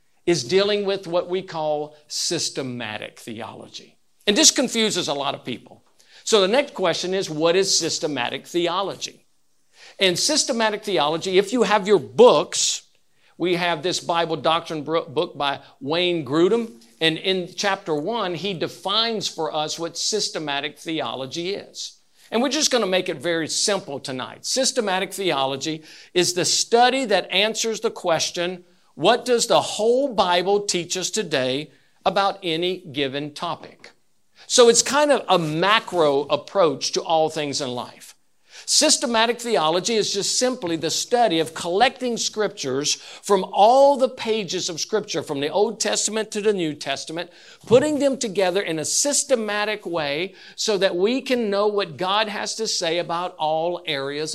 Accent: American